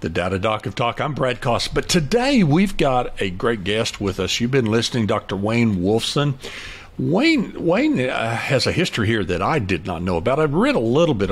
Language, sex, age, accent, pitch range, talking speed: English, male, 60-79, American, 95-135 Hz, 215 wpm